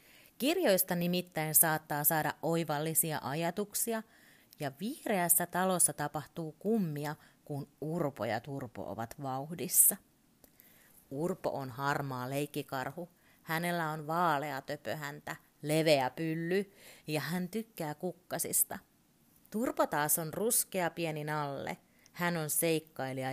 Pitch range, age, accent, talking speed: 140-180 Hz, 30-49, native, 105 wpm